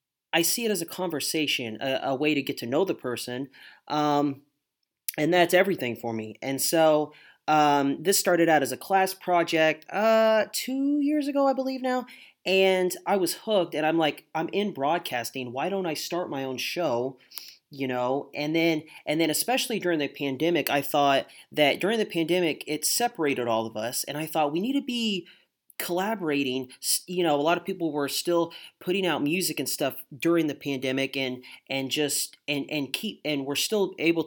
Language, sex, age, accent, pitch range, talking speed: English, male, 30-49, American, 135-175 Hz, 195 wpm